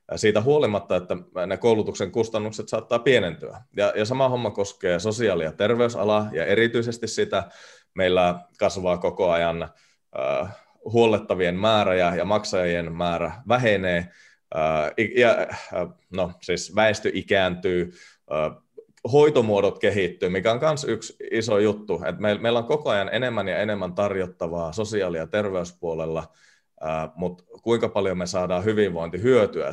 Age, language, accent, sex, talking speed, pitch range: 30-49, Finnish, native, male, 125 wpm, 85-115 Hz